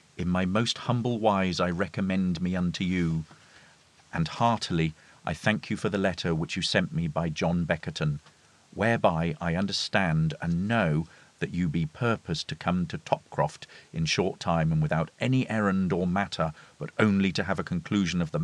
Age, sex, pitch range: 40-59, male, 80-100 Hz